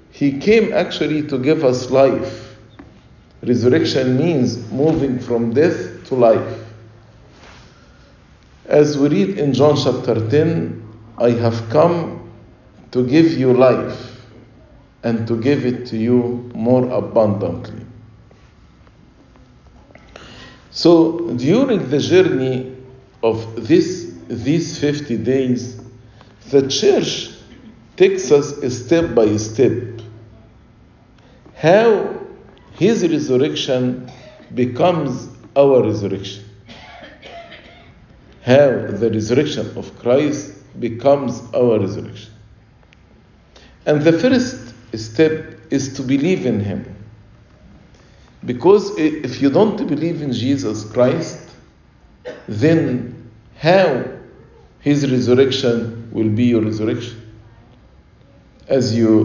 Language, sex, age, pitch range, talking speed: English, male, 50-69, 115-140 Hz, 95 wpm